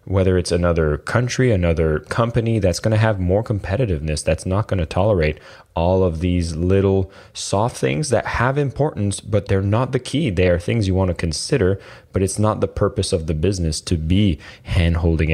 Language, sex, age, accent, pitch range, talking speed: English, male, 20-39, American, 85-100 Hz, 185 wpm